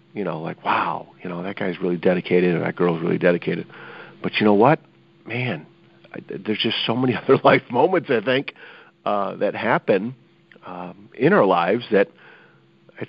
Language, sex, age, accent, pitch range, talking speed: English, male, 50-69, American, 90-120 Hz, 180 wpm